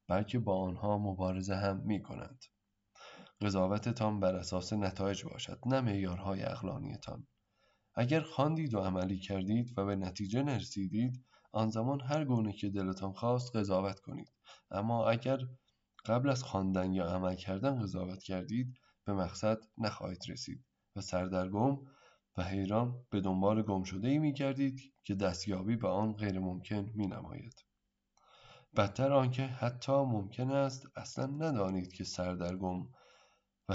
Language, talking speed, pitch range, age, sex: Persian, 130 wpm, 95-125 Hz, 20-39, male